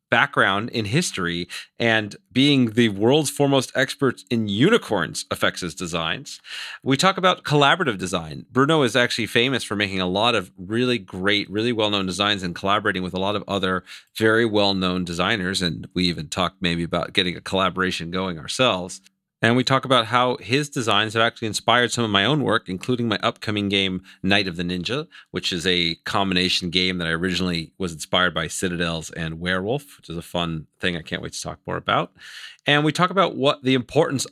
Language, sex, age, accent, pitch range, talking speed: English, male, 40-59, American, 90-120 Hz, 195 wpm